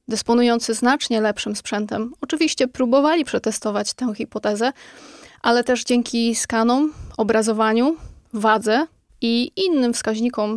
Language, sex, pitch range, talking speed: Polish, female, 220-250 Hz, 100 wpm